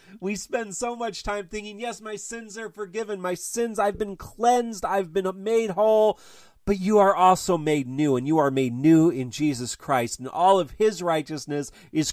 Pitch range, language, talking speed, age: 140-200 Hz, English, 200 wpm, 30-49